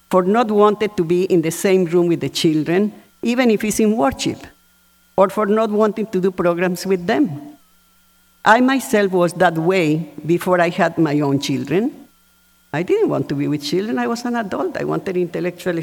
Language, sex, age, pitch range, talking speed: English, female, 50-69, 165-210 Hz, 195 wpm